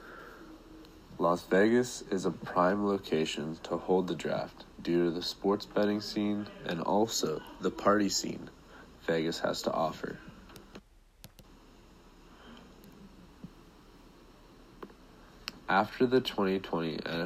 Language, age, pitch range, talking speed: English, 30-49, 80-100 Hz, 95 wpm